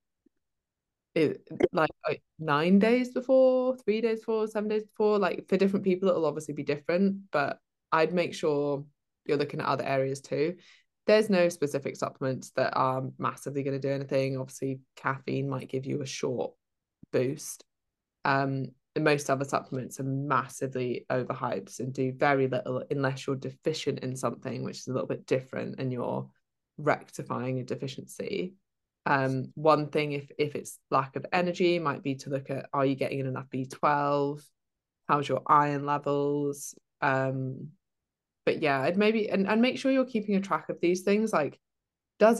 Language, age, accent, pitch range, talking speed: English, 20-39, British, 135-170 Hz, 170 wpm